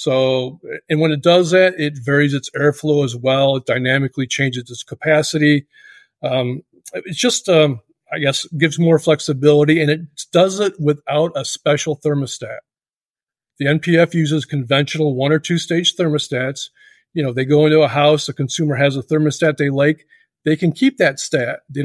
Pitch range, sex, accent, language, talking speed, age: 145-175 Hz, male, American, English, 175 wpm, 40-59